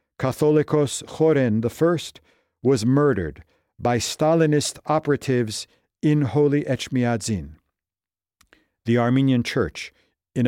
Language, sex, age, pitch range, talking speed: English, male, 50-69, 100-155 Hz, 90 wpm